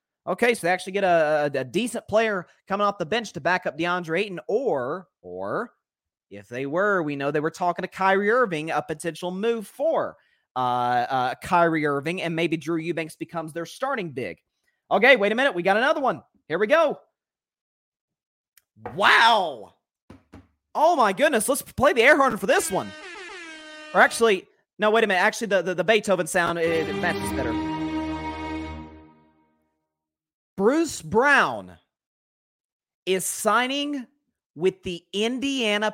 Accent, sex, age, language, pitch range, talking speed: American, male, 30-49, English, 155-230 Hz, 155 wpm